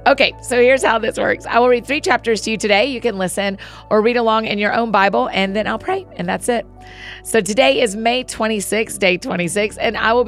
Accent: American